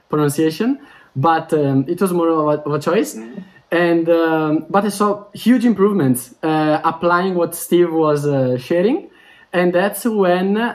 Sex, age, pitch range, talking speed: male, 20-39, 155-200 Hz, 155 wpm